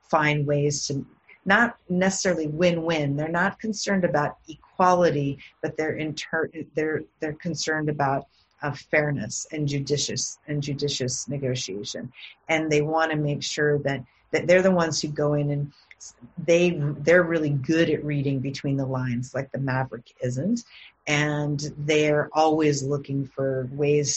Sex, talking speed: female, 150 wpm